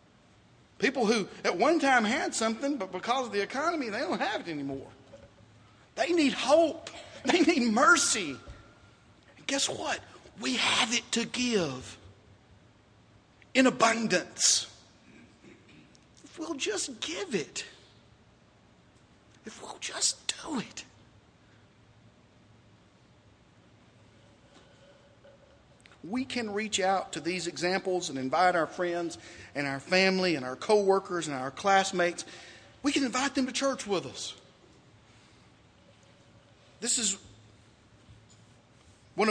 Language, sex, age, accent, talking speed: English, male, 50-69, American, 110 wpm